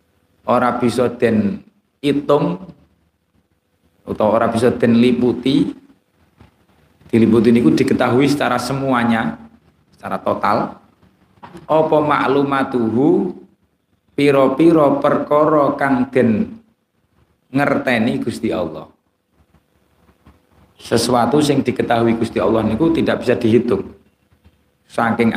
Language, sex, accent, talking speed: Indonesian, male, native, 85 wpm